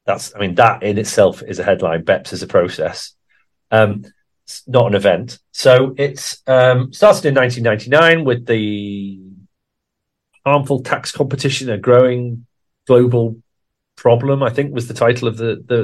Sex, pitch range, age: male, 100-125 Hz, 40-59